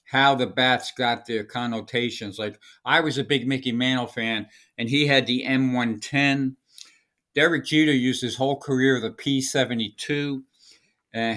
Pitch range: 115-140 Hz